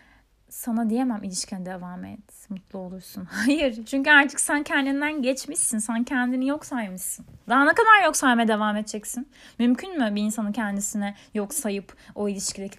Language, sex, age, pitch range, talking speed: Turkish, female, 30-49, 200-260 Hz, 155 wpm